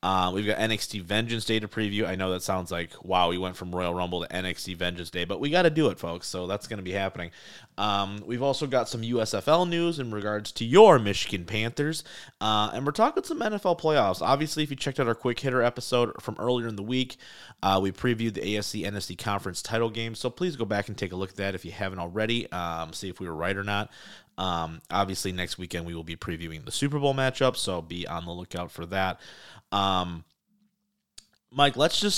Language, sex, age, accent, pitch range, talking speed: English, male, 30-49, American, 95-130 Hz, 230 wpm